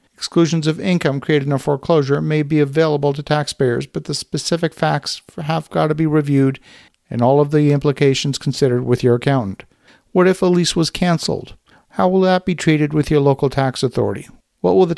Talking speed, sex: 195 wpm, male